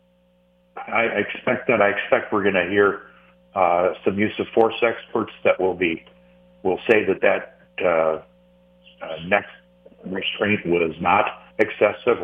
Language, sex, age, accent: English, male, 60-79, American